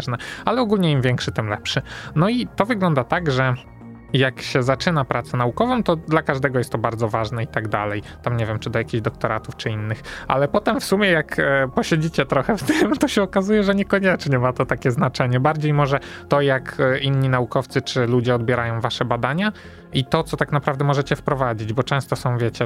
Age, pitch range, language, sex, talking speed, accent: 20-39, 120-150 Hz, Polish, male, 200 wpm, native